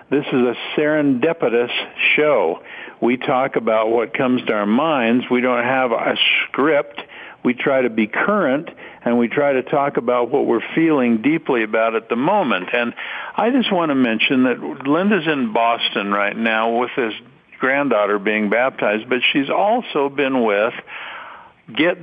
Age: 50-69